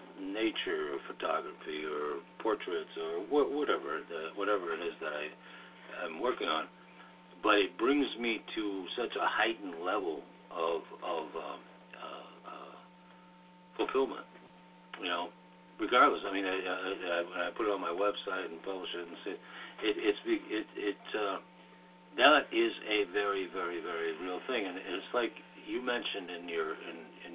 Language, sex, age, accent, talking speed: English, male, 60-79, American, 155 wpm